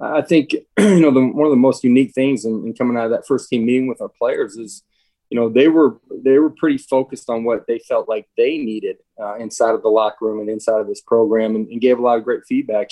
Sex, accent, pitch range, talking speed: male, American, 115-140 Hz, 270 wpm